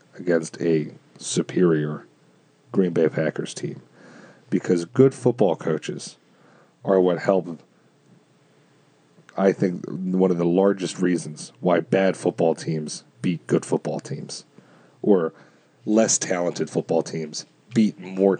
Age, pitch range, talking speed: 40-59, 90-120 Hz, 115 wpm